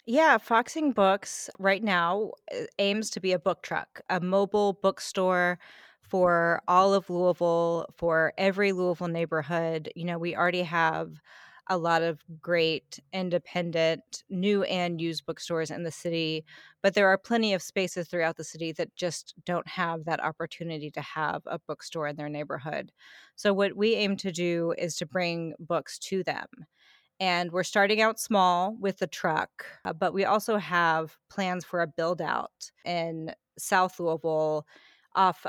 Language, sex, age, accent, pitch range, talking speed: English, female, 30-49, American, 165-190 Hz, 155 wpm